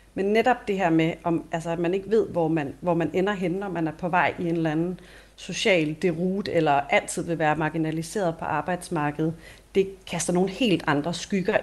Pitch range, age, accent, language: 155-185 Hz, 40-59, native, Danish